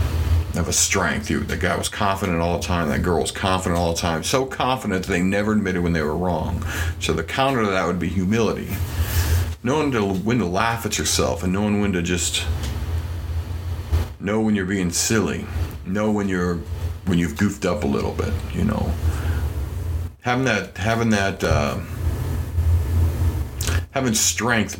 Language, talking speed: English, 170 wpm